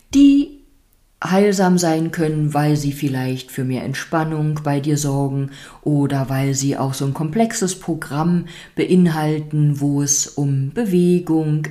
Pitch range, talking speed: 145-185 Hz, 135 wpm